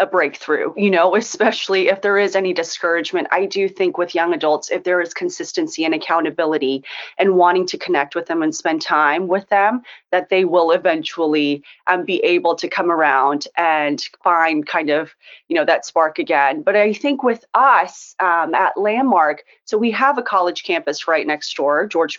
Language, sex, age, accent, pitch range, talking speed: English, female, 30-49, American, 170-225 Hz, 185 wpm